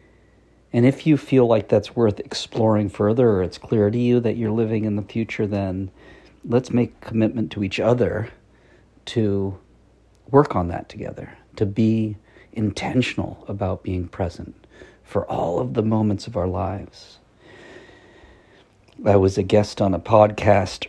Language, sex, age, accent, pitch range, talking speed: English, male, 50-69, American, 100-115 Hz, 155 wpm